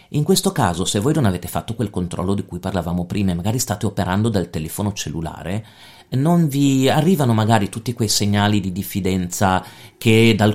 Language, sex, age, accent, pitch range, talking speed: Italian, male, 40-59, native, 90-120 Hz, 180 wpm